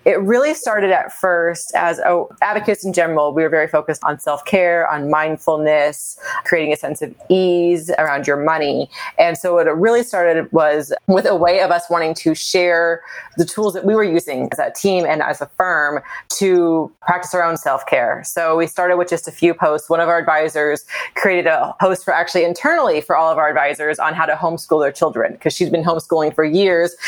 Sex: female